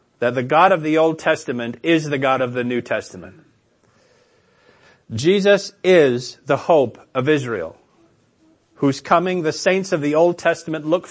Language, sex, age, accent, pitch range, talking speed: English, male, 40-59, American, 135-170 Hz, 155 wpm